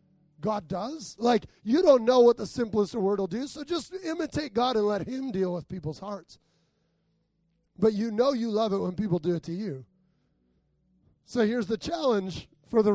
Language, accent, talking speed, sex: English, American, 190 wpm, male